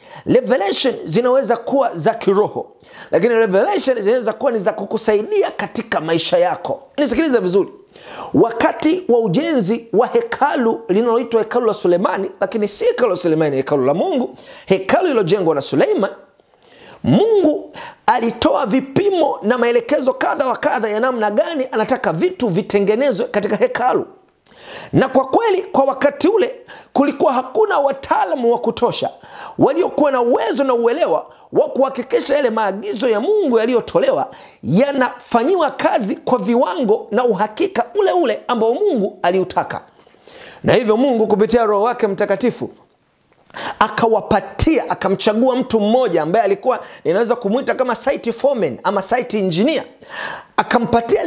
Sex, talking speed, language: male, 130 wpm, Swahili